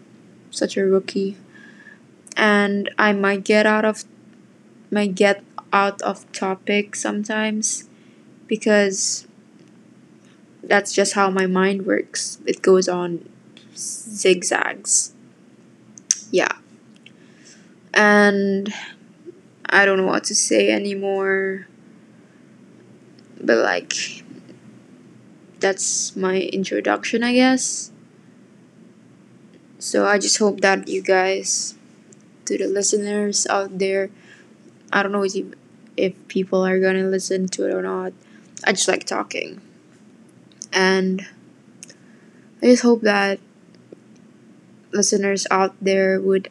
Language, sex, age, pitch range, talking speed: English, female, 20-39, 190-210 Hz, 100 wpm